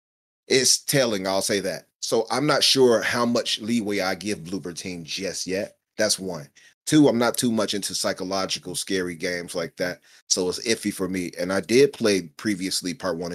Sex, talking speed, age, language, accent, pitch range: male, 195 wpm, 30-49, English, American, 95-120 Hz